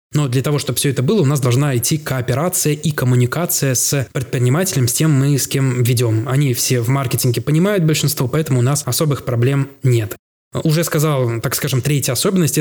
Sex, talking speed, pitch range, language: male, 190 wpm, 125-150 Hz, Russian